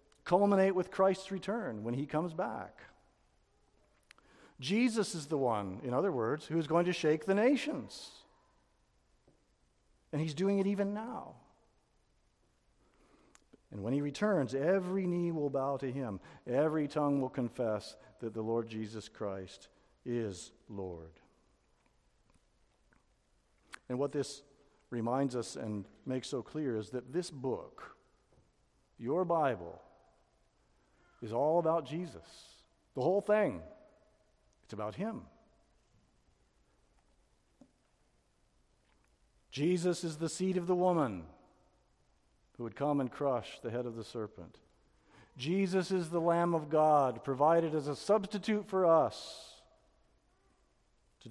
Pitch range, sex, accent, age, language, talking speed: 120-180 Hz, male, American, 50-69, English, 120 wpm